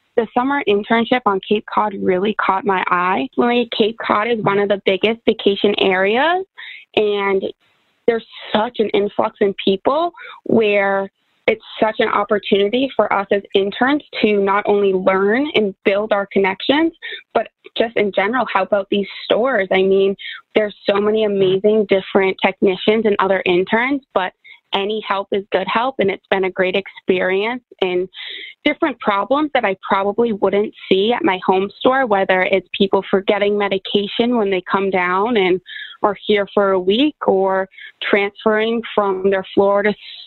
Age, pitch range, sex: 20-39, 195-225 Hz, female